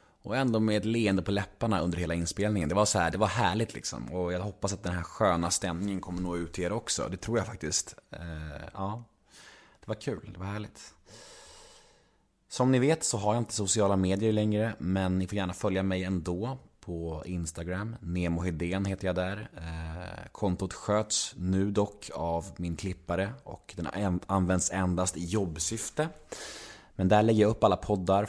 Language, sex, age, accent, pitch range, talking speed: Swedish, male, 20-39, native, 90-110 Hz, 180 wpm